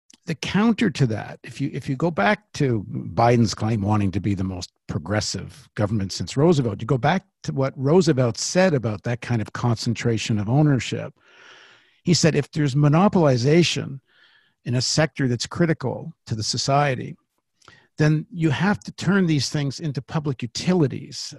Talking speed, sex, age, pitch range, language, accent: 165 wpm, male, 60-79, 120-160 Hz, English, American